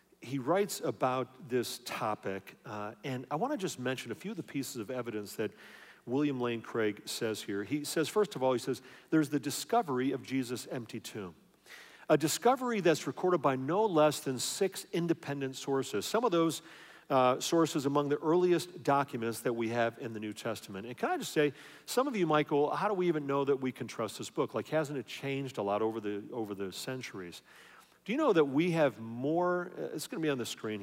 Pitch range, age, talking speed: 125-165 Hz, 40-59, 215 wpm